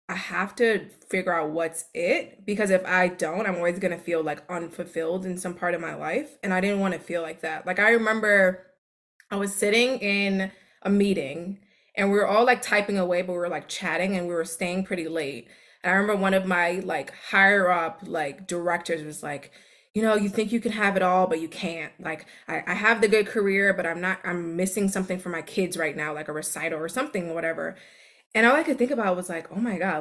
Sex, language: female, English